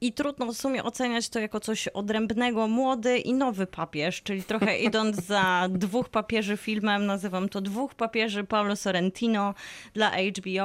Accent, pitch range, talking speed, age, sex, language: native, 190-230 Hz, 160 wpm, 20-39, female, Polish